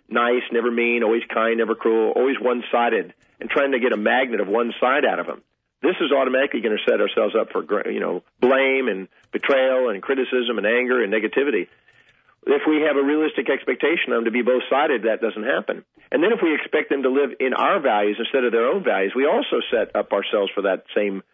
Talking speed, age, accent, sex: 220 wpm, 50-69, American, male